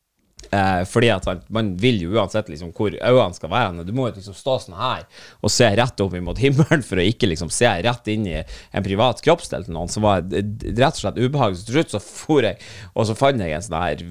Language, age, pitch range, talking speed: English, 30-49, 90-115 Hz, 245 wpm